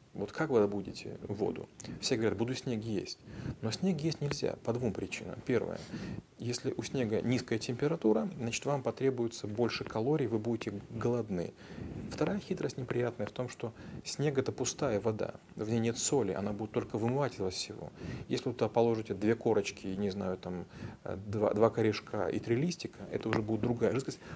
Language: Russian